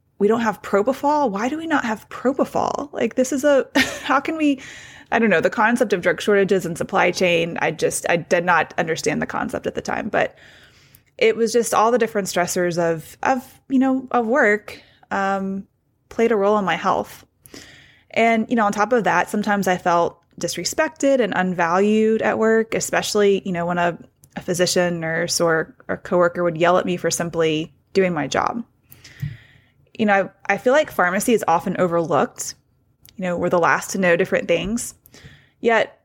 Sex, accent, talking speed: female, American, 190 wpm